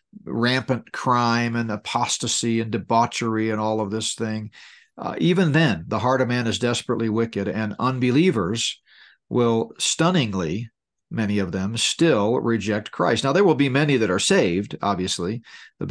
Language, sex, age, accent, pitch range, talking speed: English, male, 50-69, American, 110-135 Hz, 155 wpm